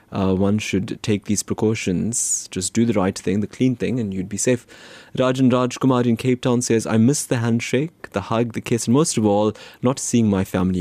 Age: 20-39